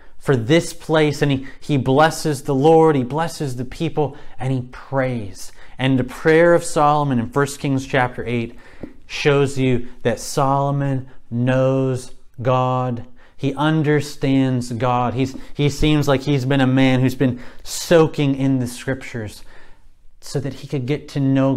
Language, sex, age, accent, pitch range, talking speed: English, male, 30-49, American, 125-145 Hz, 155 wpm